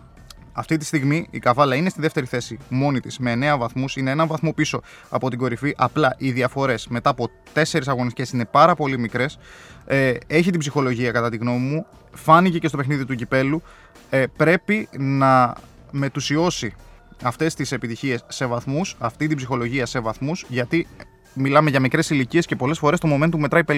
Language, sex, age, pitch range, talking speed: Greek, male, 20-39, 125-155 Hz, 180 wpm